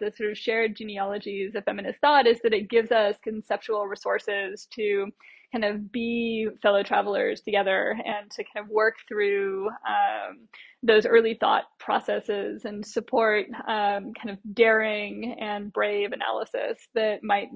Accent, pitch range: American, 210-250 Hz